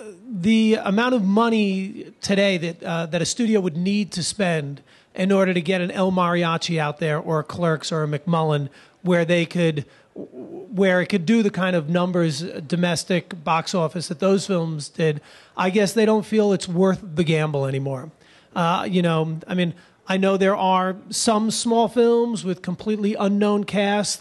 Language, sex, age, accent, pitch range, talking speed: English, male, 30-49, American, 175-215 Hz, 185 wpm